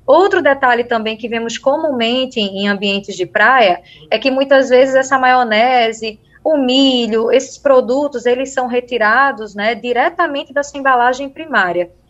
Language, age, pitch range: Portuguese, 20-39, 225-265 Hz